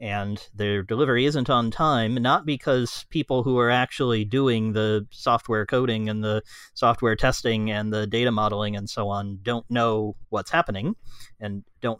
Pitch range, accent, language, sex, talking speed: 105-125 Hz, American, English, male, 165 wpm